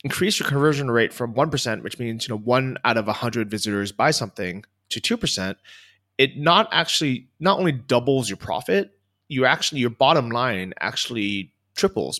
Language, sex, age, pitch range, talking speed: English, male, 20-39, 100-130 Hz, 180 wpm